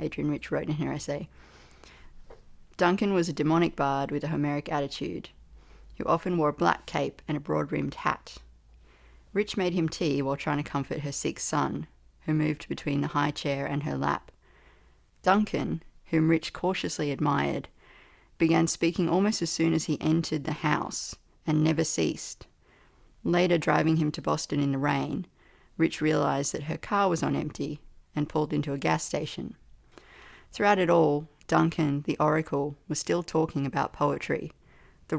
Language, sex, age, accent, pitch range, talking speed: English, female, 40-59, Australian, 140-165 Hz, 165 wpm